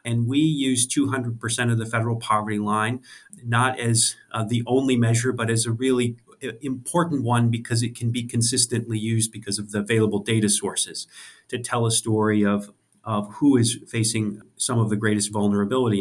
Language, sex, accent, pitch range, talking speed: English, male, American, 110-135 Hz, 175 wpm